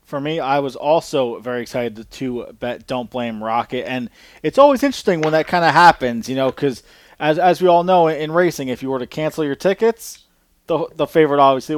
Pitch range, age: 130-165 Hz, 20-39